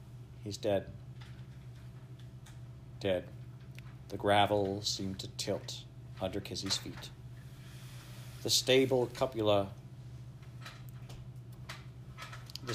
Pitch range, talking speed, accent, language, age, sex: 105-125 Hz, 70 wpm, American, English, 50-69, male